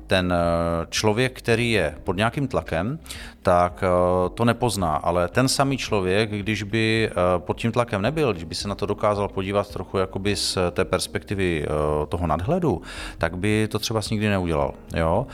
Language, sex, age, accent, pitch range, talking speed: Czech, male, 40-59, native, 90-105 Hz, 160 wpm